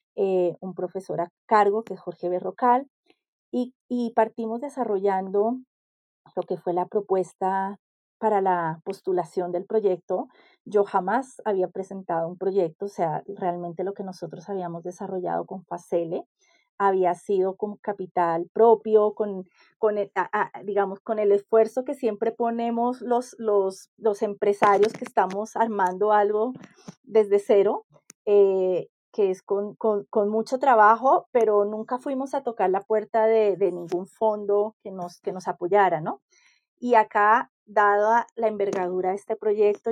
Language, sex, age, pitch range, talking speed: Spanish, female, 30-49, 185-225 Hz, 150 wpm